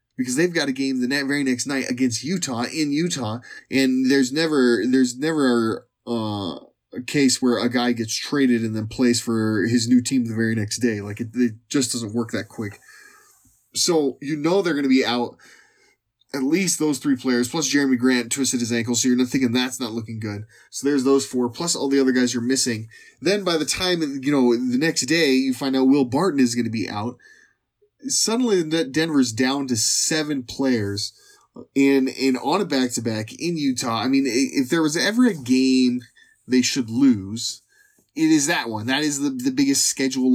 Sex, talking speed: male, 200 wpm